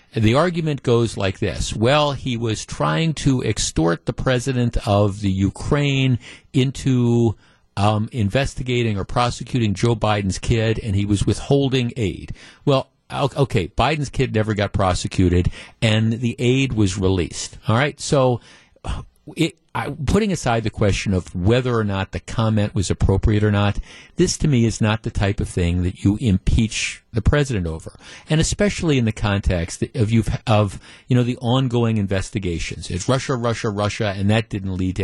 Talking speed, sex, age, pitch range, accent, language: 170 wpm, male, 50-69, 100-125 Hz, American, English